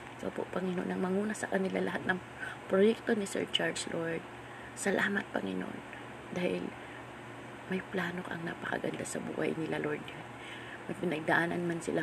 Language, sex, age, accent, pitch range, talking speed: Filipino, female, 20-39, native, 120-195 Hz, 150 wpm